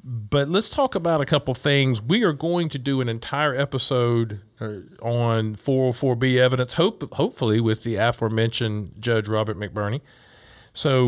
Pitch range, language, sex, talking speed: 115-140 Hz, English, male, 145 wpm